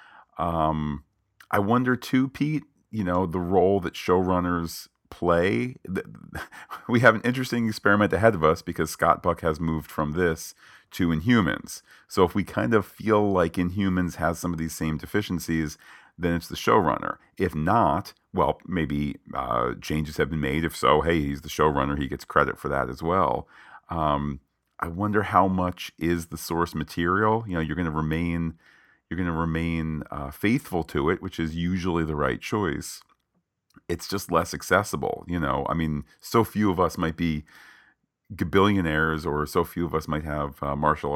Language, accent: English, American